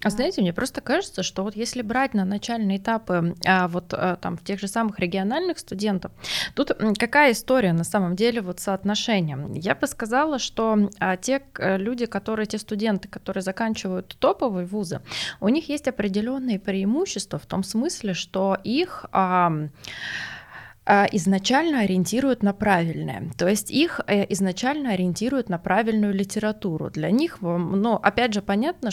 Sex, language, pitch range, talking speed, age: female, Russian, 190-235 Hz, 150 wpm, 20-39